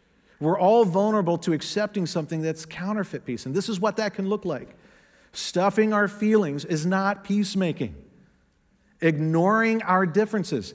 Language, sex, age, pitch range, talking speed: English, male, 40-59, 160-210 Hz, 145 wpm